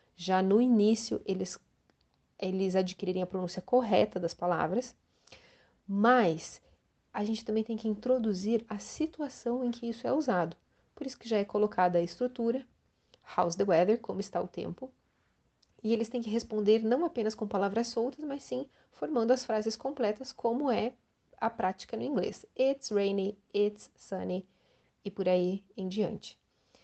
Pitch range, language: 190-240 Hz, Portuguese